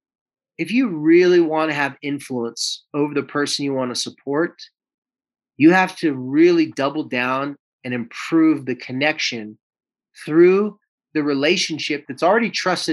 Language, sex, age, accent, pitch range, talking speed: English, male, 30-49, American, 140-185 Hz, 140 wpm